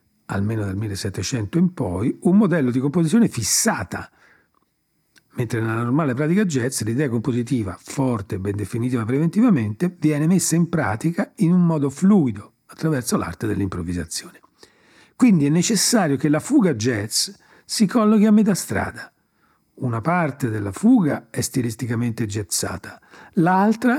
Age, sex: 40-59, male